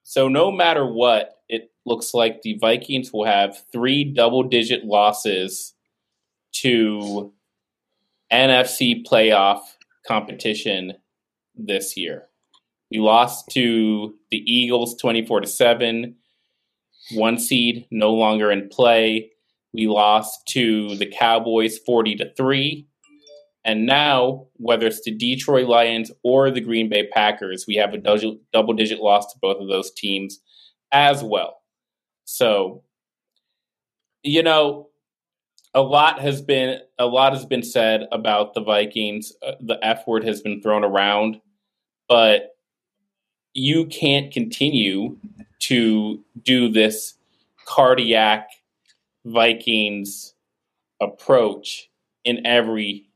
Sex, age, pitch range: male, 20-39, 110-130 Hz